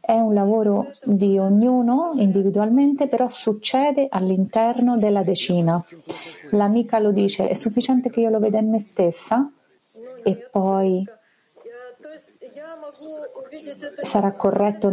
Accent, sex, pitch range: native, female, 195-245 Hz